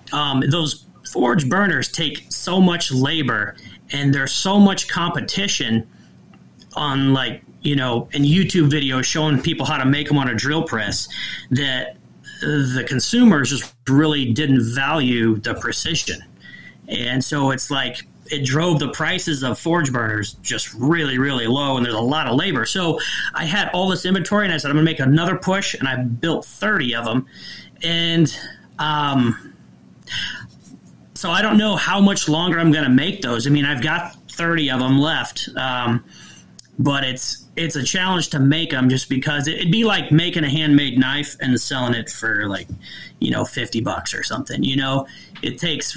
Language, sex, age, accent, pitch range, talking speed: English, male, 30-49, American, 130-165 Hz, 175 wpm